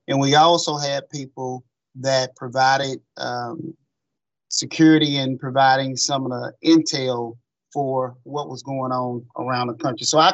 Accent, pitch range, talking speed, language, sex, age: American, 125-145 Hz, 145 wpm, English, male, 30-49